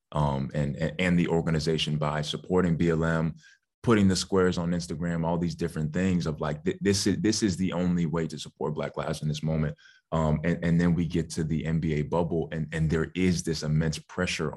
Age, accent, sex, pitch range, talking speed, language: 20-39, American, male, 80-90 Hz, 215 wpm, English